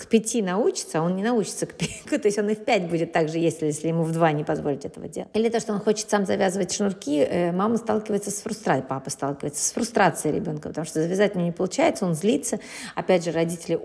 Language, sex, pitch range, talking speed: Russian, female, 165-215 Hz, 240 wpm